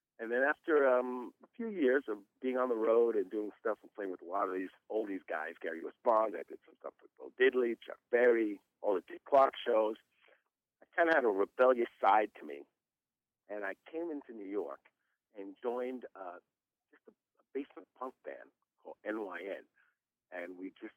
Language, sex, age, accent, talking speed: English, male, 60-79, American, 195 wpm